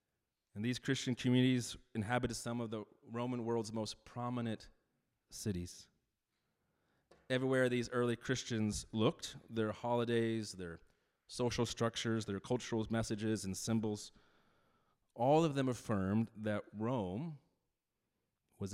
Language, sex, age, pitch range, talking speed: English, male, 30-49, 105-125 Hz, 110 wpm